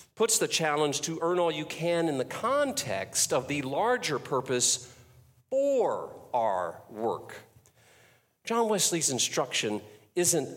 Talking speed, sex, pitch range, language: 125 wpm, male, 135-195 Hz, English